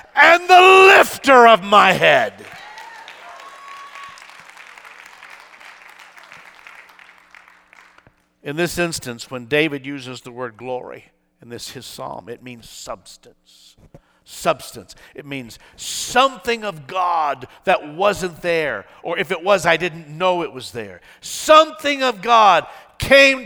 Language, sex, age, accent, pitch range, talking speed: English, male, 50-69, American, 205-275 Hz, 115 wpm